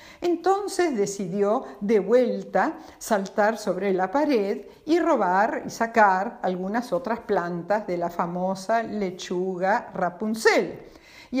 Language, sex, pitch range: Spanish, female, 220-305 Hz